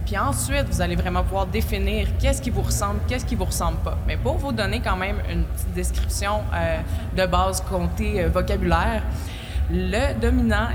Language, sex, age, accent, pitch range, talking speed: French, female, 20-39, Canadian, 85-125 Hz, 185 wpm